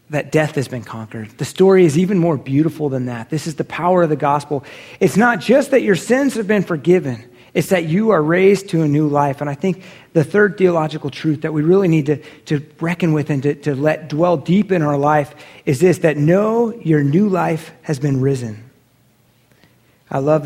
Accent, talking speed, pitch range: American, 215 wpm, 150-190 Hz